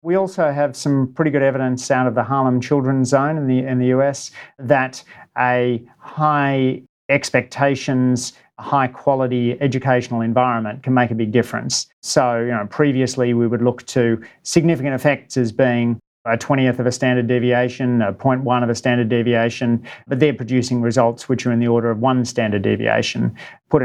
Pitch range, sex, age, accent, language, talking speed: 120-135 Hz, male, 40-59, Australian, English, 175 wpm